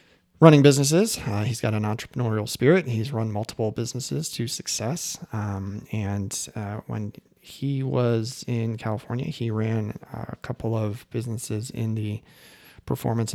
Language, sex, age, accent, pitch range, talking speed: English, male, 30-49, American, 110-130 Hz, 140 wpm